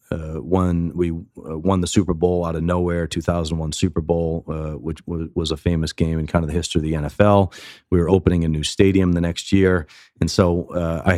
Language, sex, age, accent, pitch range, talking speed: English, male, 30-49, American, 80-90 Hz, 225 wpm